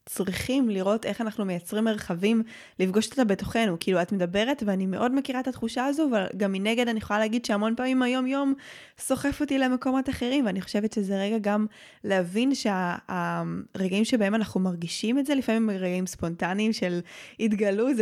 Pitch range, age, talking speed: 185-235 Hz, 20-39, 170 wpm